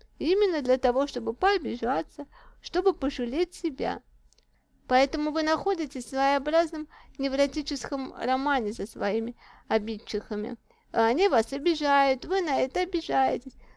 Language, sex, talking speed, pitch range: Russian, female, 110 wpm, 240-310 Hz